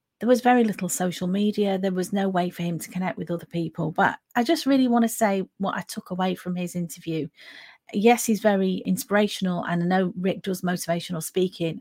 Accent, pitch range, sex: British, 175-220 Hz, female